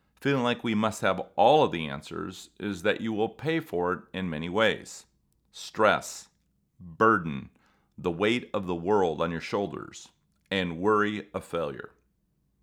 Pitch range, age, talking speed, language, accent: 90-105 Hz, 40-59, 155 wpm, English, American